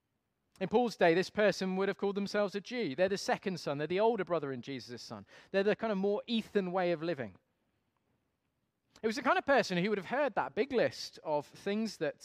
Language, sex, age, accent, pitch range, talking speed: English, male, 30-49, British, 115-170 Hz, 230 wpm